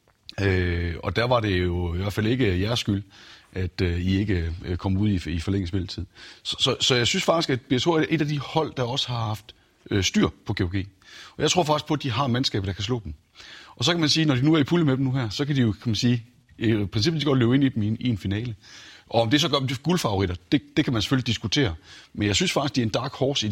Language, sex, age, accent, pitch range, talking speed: Danish, male, 30-49, native, 95-120 Hz, 290 wpm